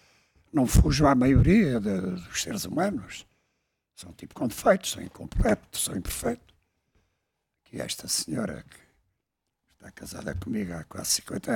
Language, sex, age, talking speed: Portuguese, male, 60-79, 140 wpm